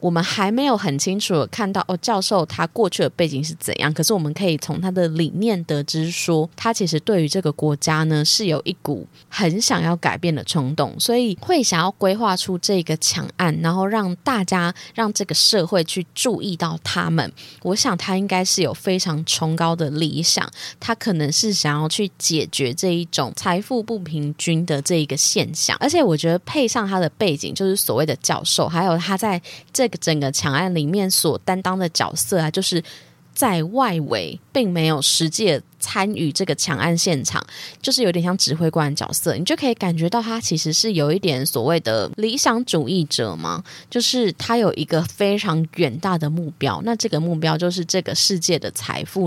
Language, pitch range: Chinese, 155-195 Hz